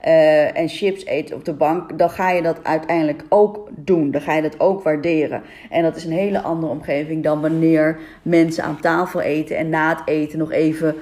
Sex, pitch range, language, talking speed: female, 155-195 Hz, Dutch, 210 wpm